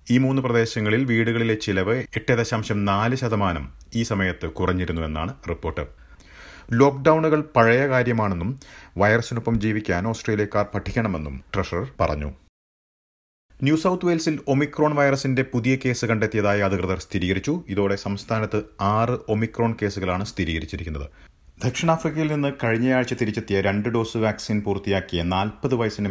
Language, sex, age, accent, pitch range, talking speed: Malayalam, male, 30-49, native, 90-120 Hz, 110 wpm